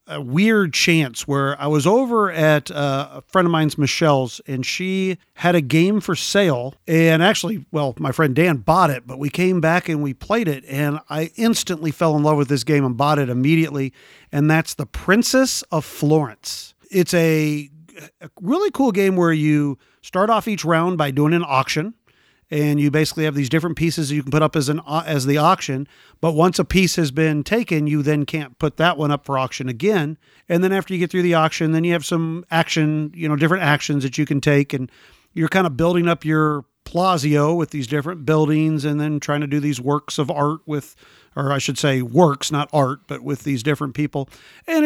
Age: 40-59